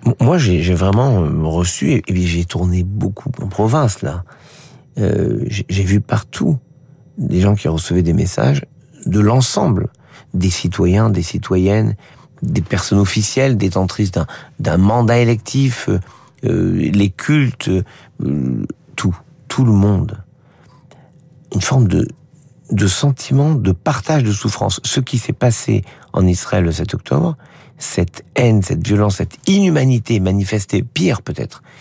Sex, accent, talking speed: male, French, 140 wpm